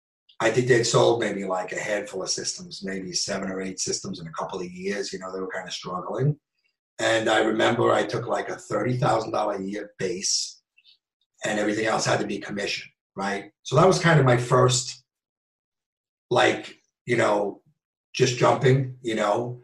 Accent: American